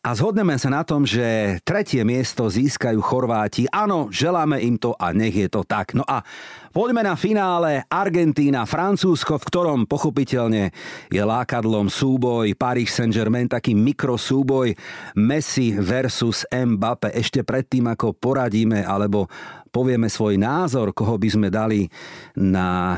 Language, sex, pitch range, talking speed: Slovak, male, 105-145 Hz, 135 wpm